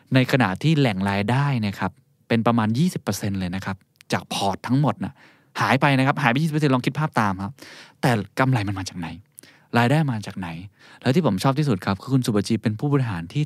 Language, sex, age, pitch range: Thai, male, 20-39, 100-130 Hz